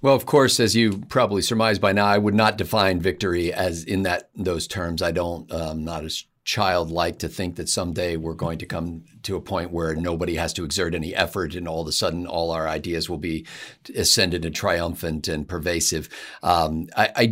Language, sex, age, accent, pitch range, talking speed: English, male, 50-69, American, 90-115 Hz, 210 wpm